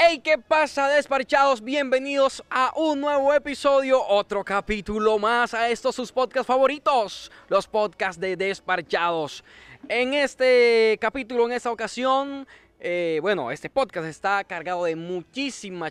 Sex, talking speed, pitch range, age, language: male, 130 wpm, 160-235 Hz, 20-39, Spanish